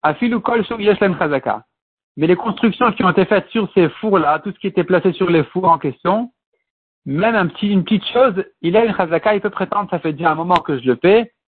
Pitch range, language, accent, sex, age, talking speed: 155-215 Hz, French, French, male, 50-69, 225 wpm